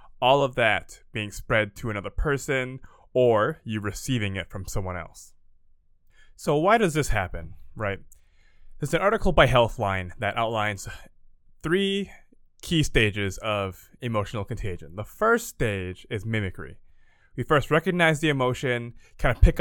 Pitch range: 100-130 Hz